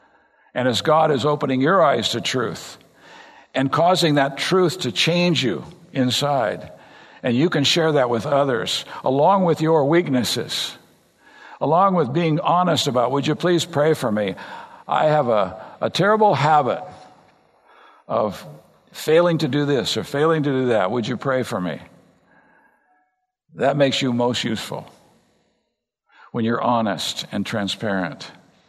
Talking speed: 145 wpm